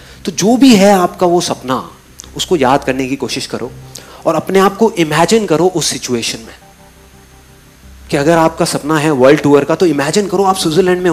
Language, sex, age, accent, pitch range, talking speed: Hindi, male, 30-49, native, 120-180 Hz, 195 wpm